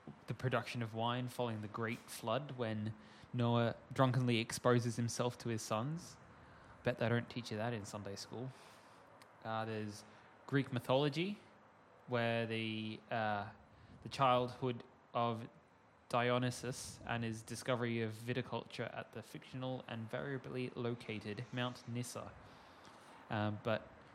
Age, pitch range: 10-29, 110-125 Hz